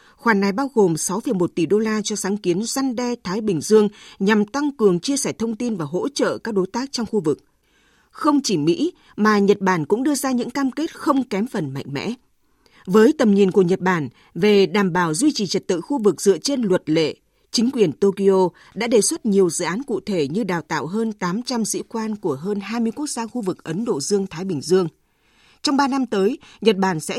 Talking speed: 230 wpm